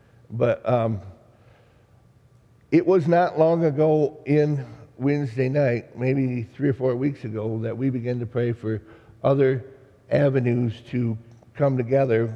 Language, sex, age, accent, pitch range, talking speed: English, male, 60-79, American, 110-130 Hz, 130 wpm